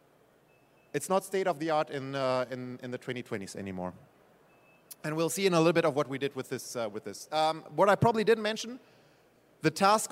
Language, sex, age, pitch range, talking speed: English, male, 30-49, 145-195 Hz, 200 wpm